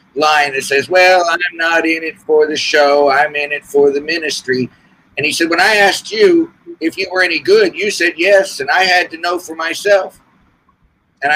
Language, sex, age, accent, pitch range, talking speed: English, male, 50-69, American, 155-205 Hz, 210 wpm